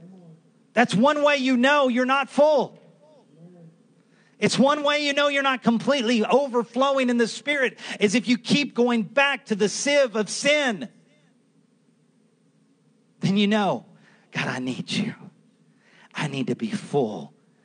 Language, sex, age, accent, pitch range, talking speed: English, male, 40-59, American, 145-235 Hz, 145 wpm